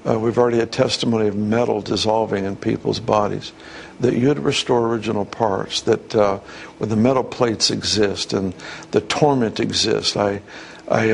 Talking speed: 155 wpm